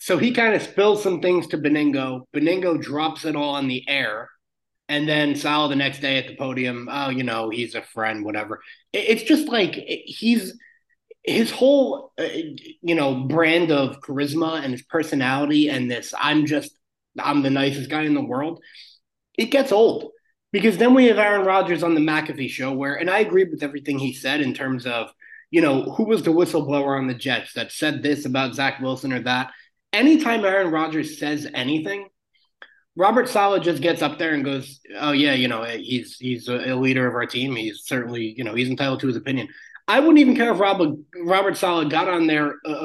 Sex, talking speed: male, 200 wpm